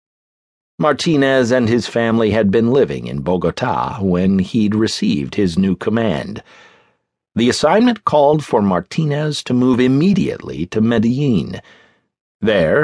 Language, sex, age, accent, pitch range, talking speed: English, male, 50-69, American, 95-150 Hz, 120 wpm